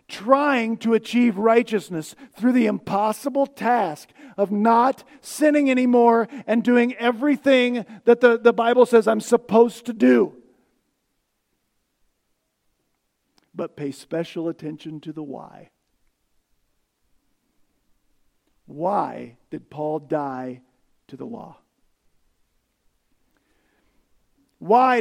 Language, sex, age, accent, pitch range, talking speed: English, male, 50-69, American, 205-295 Hz, 95 wpm